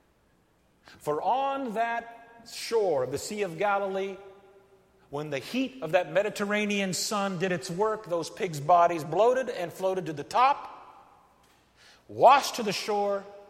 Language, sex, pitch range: English, male, 150-210 Hz